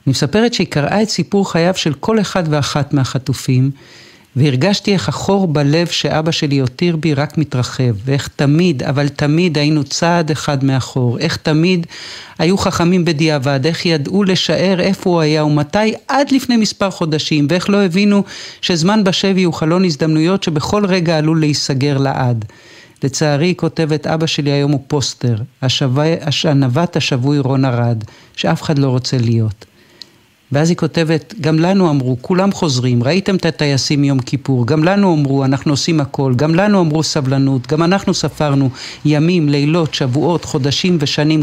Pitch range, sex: 145-180 Hz, male